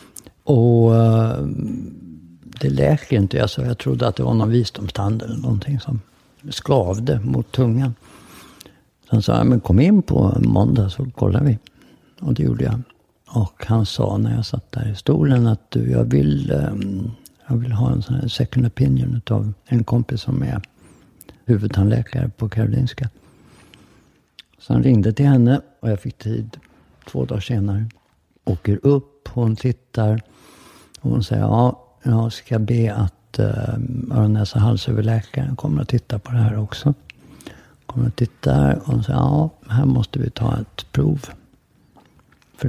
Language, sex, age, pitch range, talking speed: English, male, 60-79, 105-130 Hz, 155 wpm